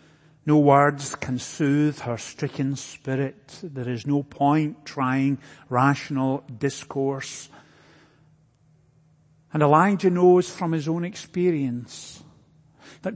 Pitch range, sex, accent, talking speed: 145-165 Hz, male, British, 100 wpm